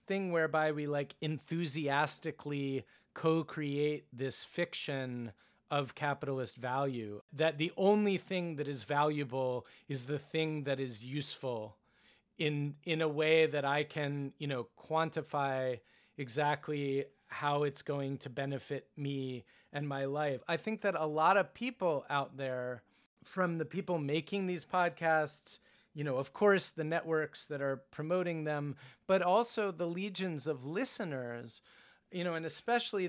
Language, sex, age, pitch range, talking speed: English, male, 30-49, 140-185 Hz, 145 wpm